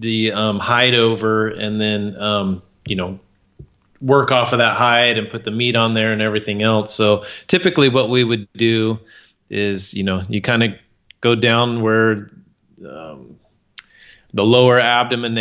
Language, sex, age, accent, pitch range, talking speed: English, male, 30-49, American, 105-120 Hz, 160 wpm